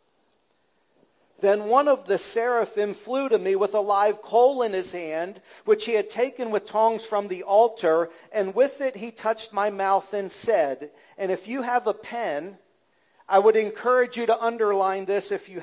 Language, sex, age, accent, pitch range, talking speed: English, male, 40-59, American, 185-235 Hz, 185 wpm